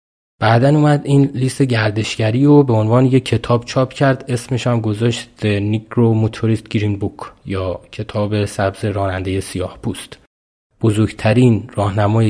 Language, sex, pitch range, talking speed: Persian, male, 100-115 Hz, 135 wpm